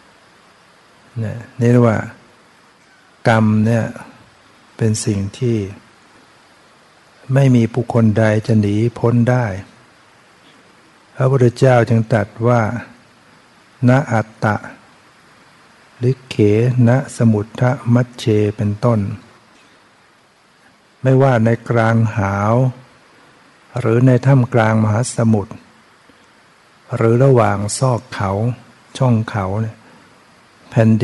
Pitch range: 110-125 Hz